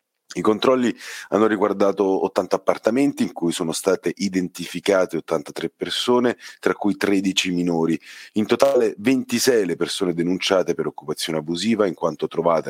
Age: 30-49